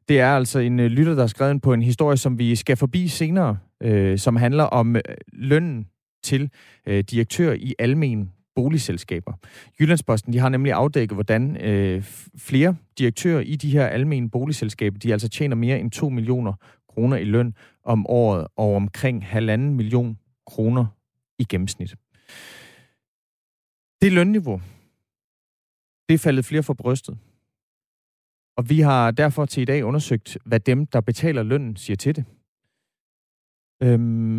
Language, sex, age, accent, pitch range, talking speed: Danish, male, 30-49, native, 110-140 Hz, 150 wpm